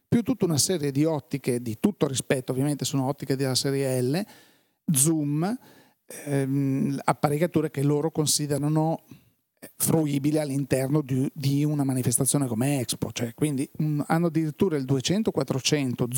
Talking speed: 125 wpm